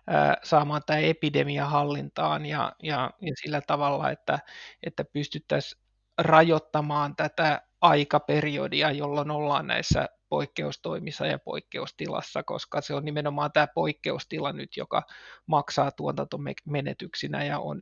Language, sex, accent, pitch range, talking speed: Finnish, male, native, 140-150 Hz, 110 wpm